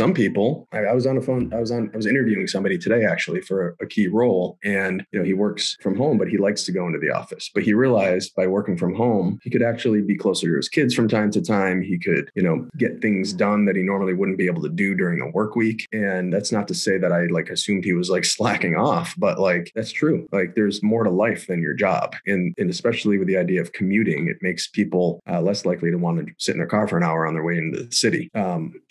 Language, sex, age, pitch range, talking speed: English, male, 30-49, 90-110 Hz, 275 wpm